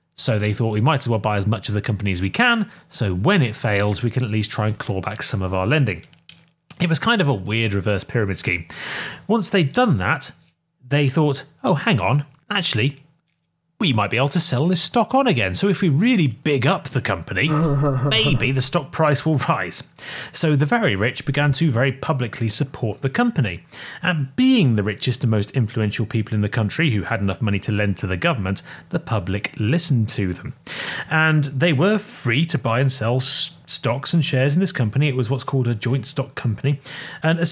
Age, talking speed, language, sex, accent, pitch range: 30-49, 215 wpm, English, male, British, 110-160 Hz